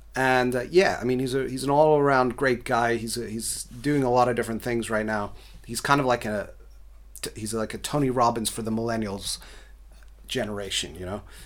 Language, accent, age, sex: English, American, 30-49, male